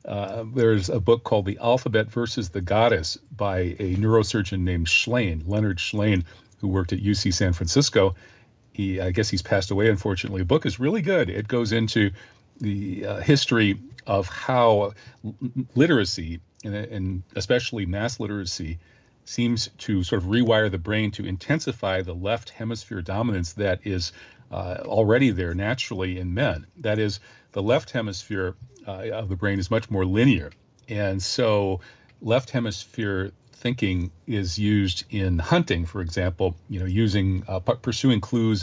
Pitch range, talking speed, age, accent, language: 95-115 Hz, 155 wpm, 40-59, American, English